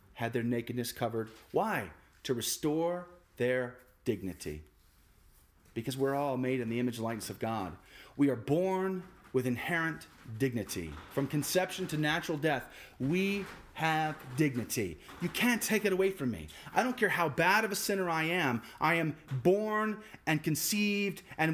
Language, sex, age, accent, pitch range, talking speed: English, male, 30-49, American, 115-180 Hz, 160 wpm